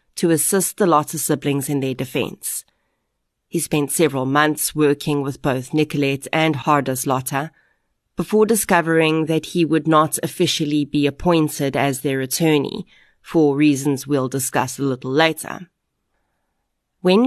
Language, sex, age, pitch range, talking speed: English, female, 30-49, 140-170 Hz, 135 wpm